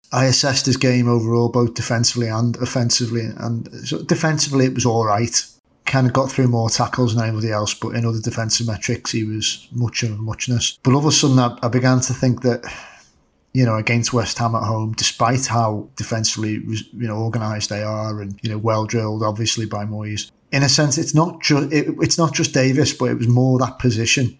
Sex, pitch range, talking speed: male, 110-125 Hz, 205 wpm